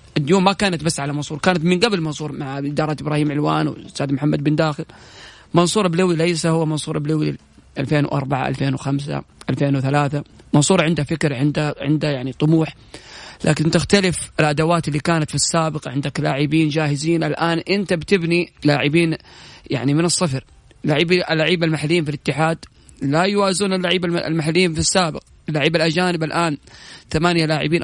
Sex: male